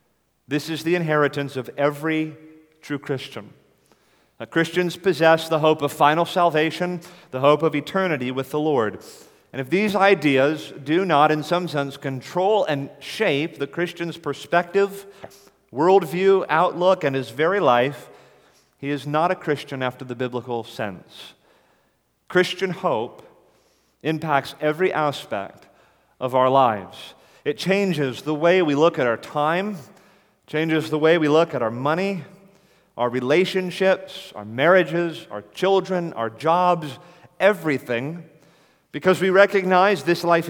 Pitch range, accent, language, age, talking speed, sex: 140-180 Hz, American, English, 40-59, 135 wpm, male